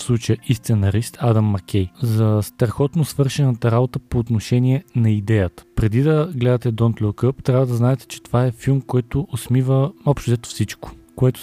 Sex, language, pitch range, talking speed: male, Bulgarian, 110-135 Hz, 170 wpm